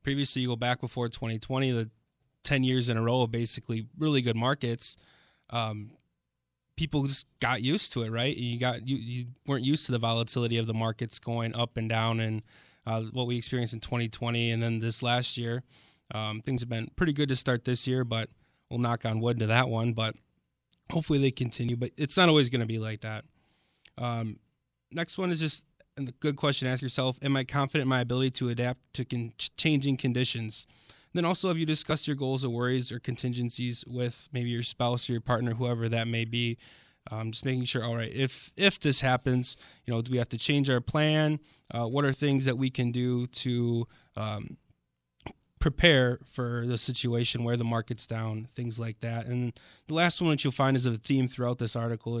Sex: male